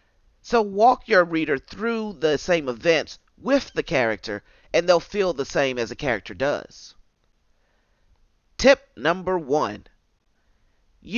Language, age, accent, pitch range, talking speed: English, 40-59, American, 145-225 Hz, 125 wpm